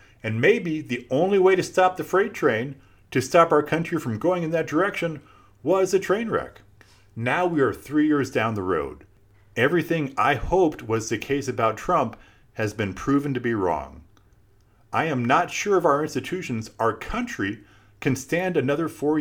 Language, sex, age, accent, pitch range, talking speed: English, male, 40-59, American, 100-140 Hz, 180 wpm